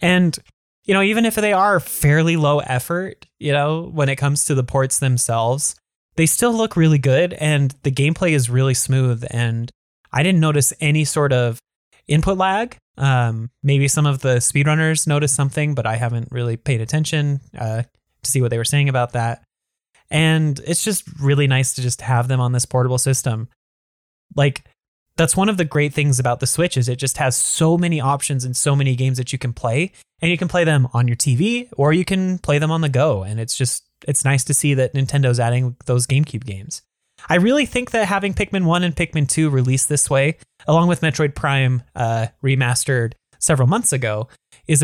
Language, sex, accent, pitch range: English, male, American, 125-160 Hz